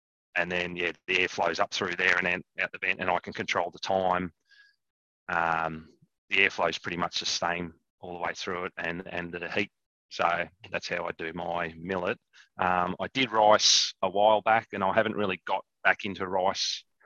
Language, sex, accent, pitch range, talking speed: English, male, Australian, 85-105 Hz, 210 wpm